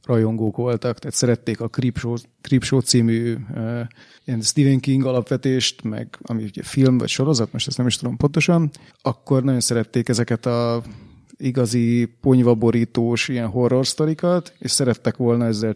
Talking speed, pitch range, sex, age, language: 150 wpm, 110-135 Hz, male, 30-49, Hungarian